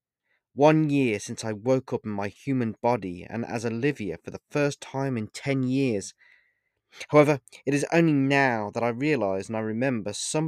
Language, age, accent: English, 30-49, British